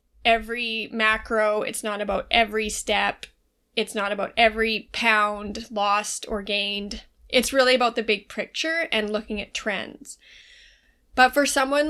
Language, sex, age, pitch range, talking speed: English, female, 20-39, 215-260 Hz, 140 wpm